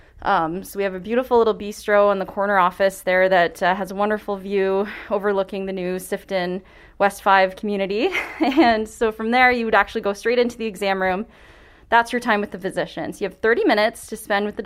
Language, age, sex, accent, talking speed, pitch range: English, 20-39, female, American, 215 wpm, 190-230 Hz